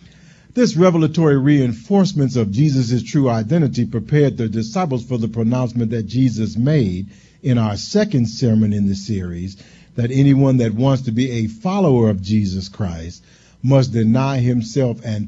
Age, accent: 50-69, American